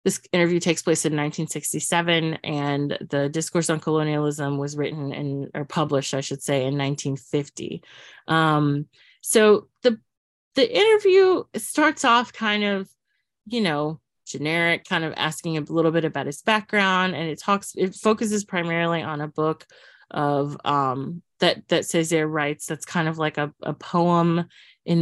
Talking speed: 155 wpm